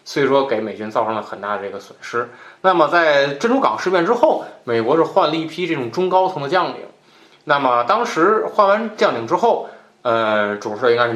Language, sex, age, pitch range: Chinese, male, 20-39, 110-175 Hz